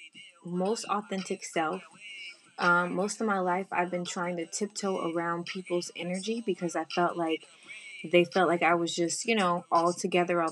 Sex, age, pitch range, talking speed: female, 20-39, 175-195 Hz, 175 wpm